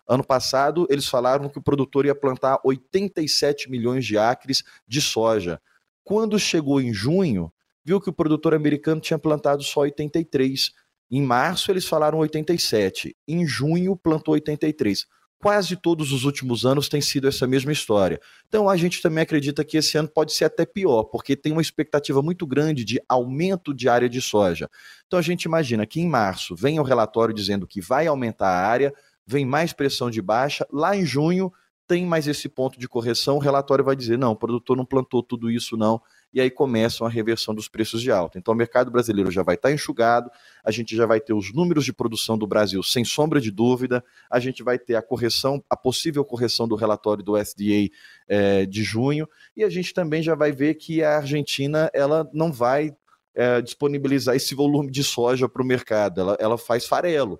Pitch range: 120-155 Hz